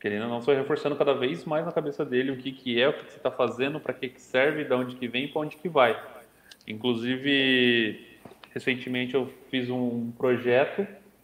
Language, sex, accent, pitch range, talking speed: Portuguese, male, Brazilian, 130-165 Hz, 210 wpm